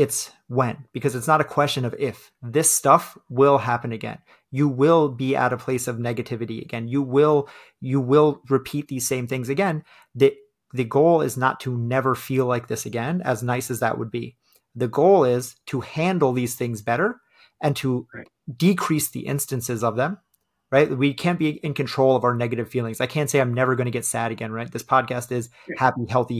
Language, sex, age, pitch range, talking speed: English, male, 30-49, 125-145 Hz, 205 wpm